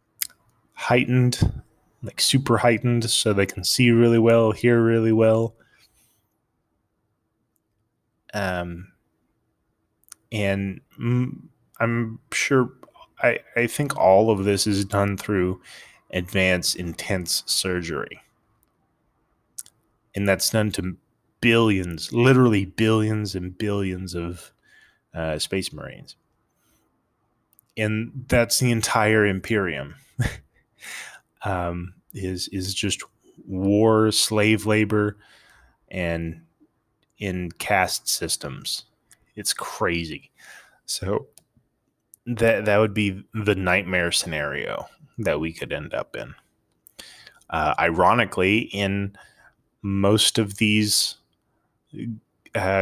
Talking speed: 90 wpm